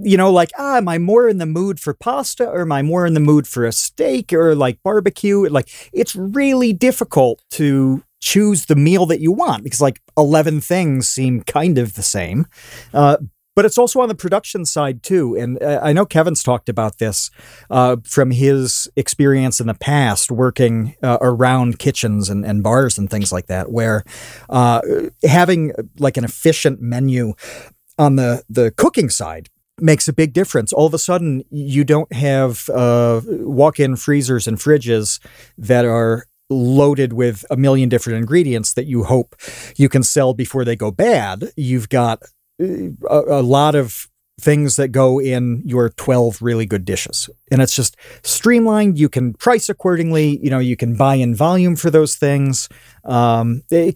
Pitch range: 120-160 Hz